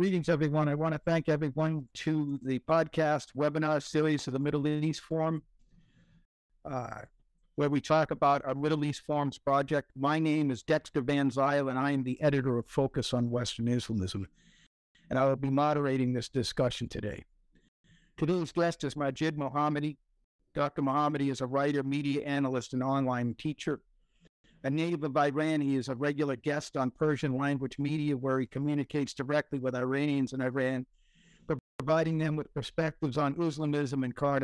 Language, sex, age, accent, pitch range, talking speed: English, male, 50-69, American, 130-150 Hz, 165 wpm